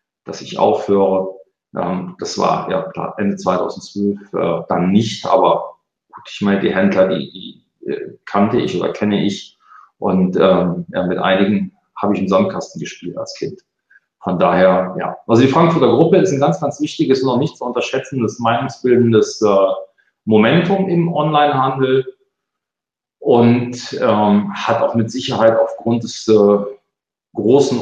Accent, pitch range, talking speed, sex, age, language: German, 105-155 Hz, 130 wpm, male, 40-59, German